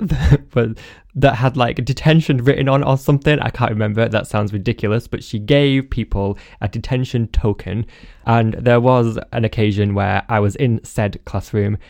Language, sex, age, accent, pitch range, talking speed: English, male, 10-29, British, 105-135 Hz, 160 wpm